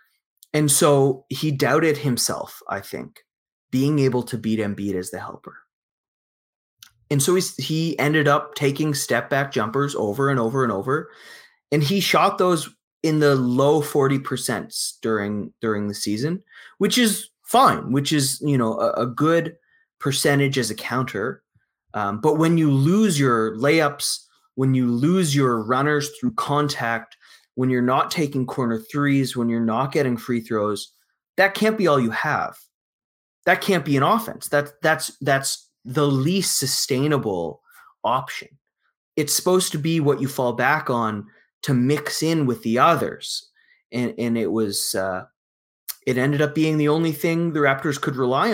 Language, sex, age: English, male, 20-39